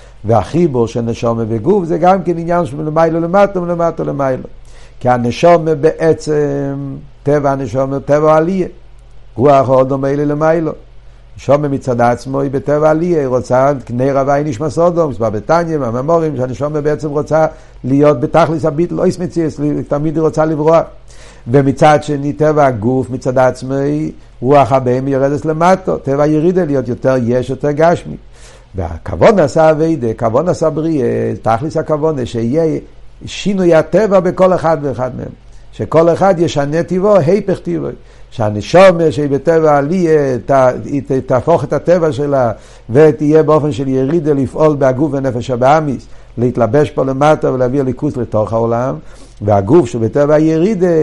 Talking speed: 140 wpm